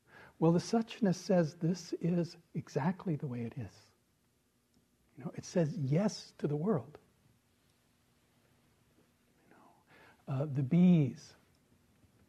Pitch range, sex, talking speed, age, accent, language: 120-160 Hz, male, 115 wpm, 60-79, American, English